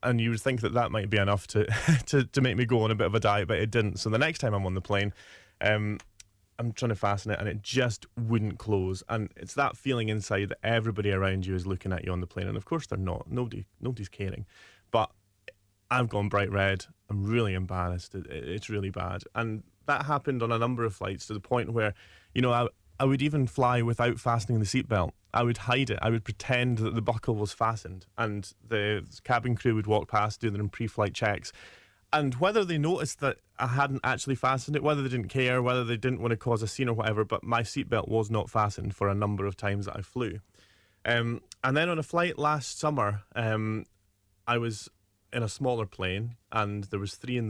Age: 20-39